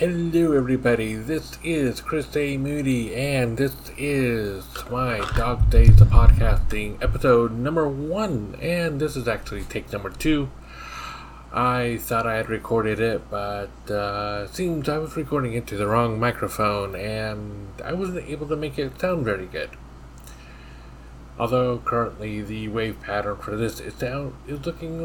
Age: 30-49